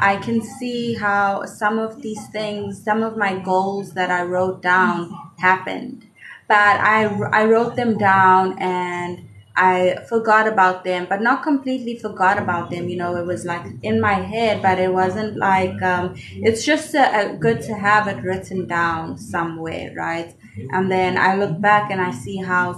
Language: Thai